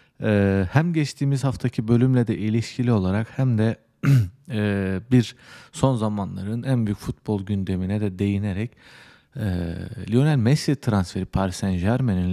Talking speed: 115 wpm